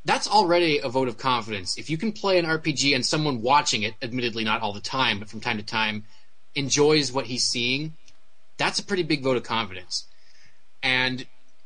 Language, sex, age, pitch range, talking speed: English, male, 30-49, 110-150 Hz, 195 wpm